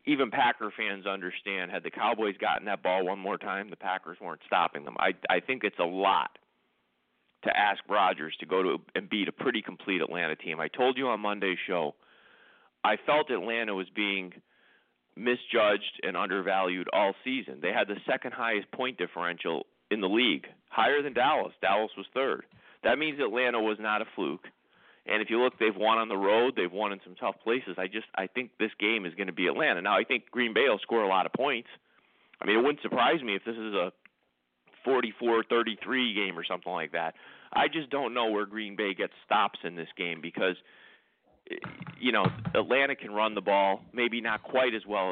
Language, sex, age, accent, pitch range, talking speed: English, male, 40-59, American, 95-115 Hz, 205 wpm